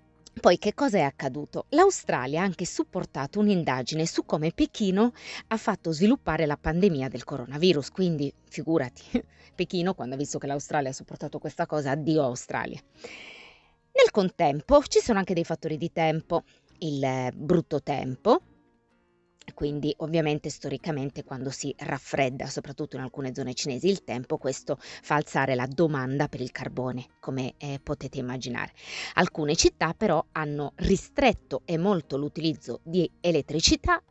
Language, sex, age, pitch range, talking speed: Italian, female, 20-39, 140-180 Hz, 145 wpm